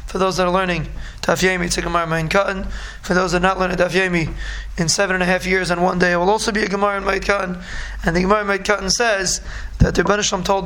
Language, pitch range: English, 185-215 Hz